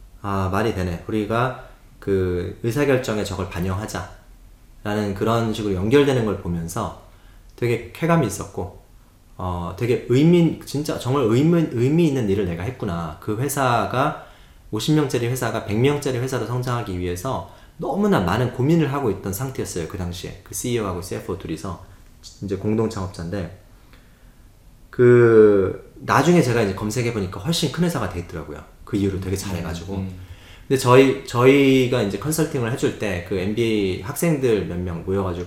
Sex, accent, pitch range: male, native, 95-125 Hz